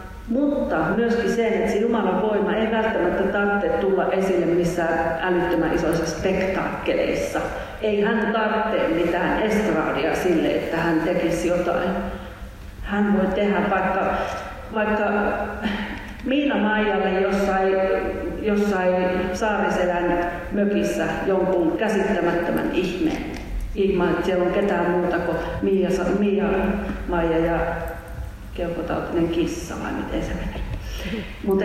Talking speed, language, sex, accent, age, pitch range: 100 wpm, Finnish, female, native, 40-59, 175-205 Hz